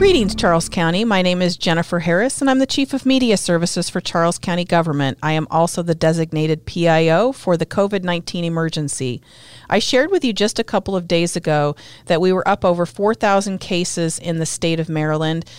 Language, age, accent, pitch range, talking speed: English, 40-59, American, 155-195 Hz, 195 wpm